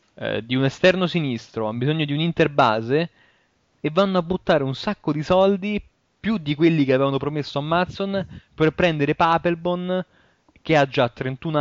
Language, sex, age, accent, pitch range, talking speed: Italian, male, 20-39, native, 115-155 Hz, 165 wpm